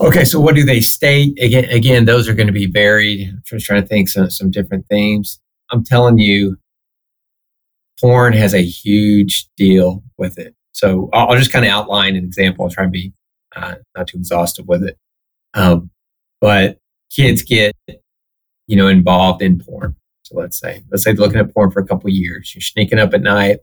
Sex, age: male, 30-49